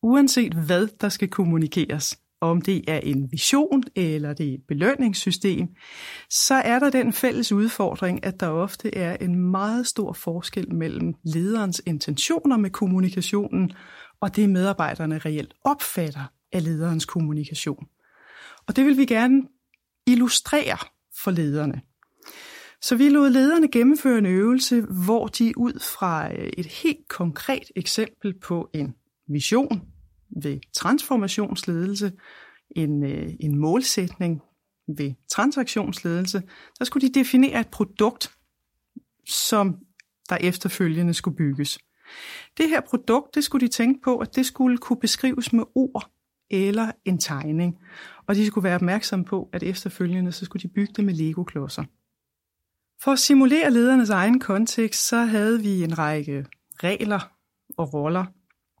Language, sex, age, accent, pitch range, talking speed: Danish, female, 30-49, native, 170-245 Hz, 135 wpm